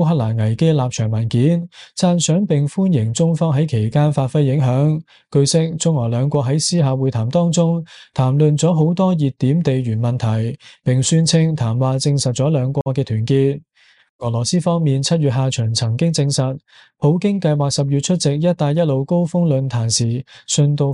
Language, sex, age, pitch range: Chinese, male, 20-39, 130-165 Hz